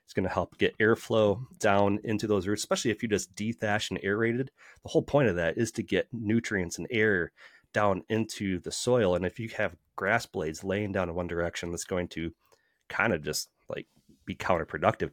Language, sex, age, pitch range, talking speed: English, male, 30-49, 90-110 Hz, 205 wpm